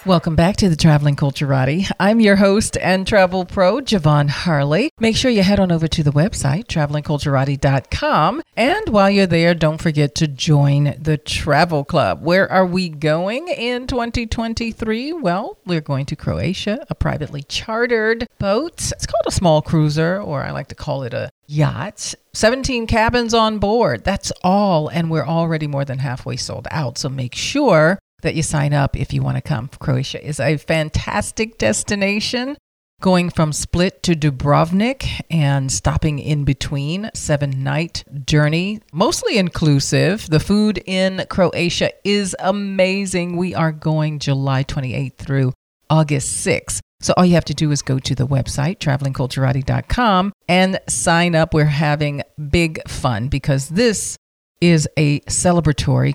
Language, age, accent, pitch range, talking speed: English, 40-59, American, 145-190 Hz, 155 wpm